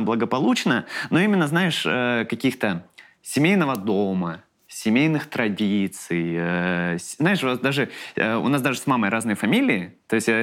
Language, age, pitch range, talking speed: Russian, 20-39, 100-155 Hz, 130 wpm